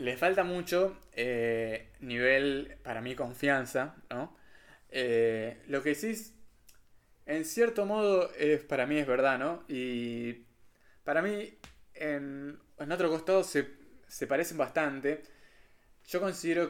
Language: Spanish